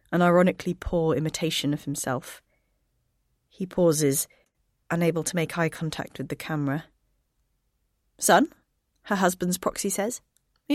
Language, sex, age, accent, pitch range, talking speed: English, female, 30-49, British, 150-185 Hz, 125 wpm